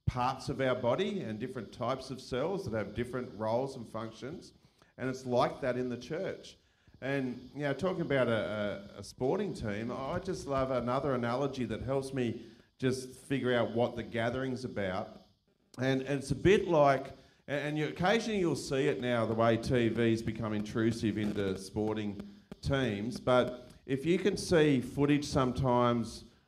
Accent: Australian